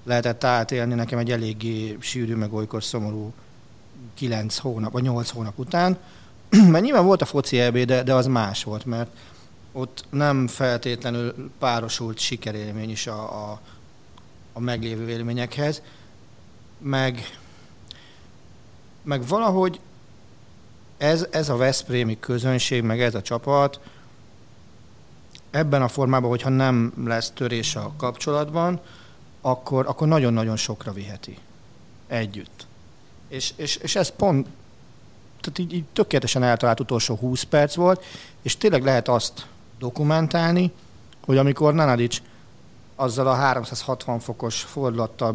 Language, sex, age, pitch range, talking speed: Hungarian, male, 40-59, 115-135 Hz, 120 wpm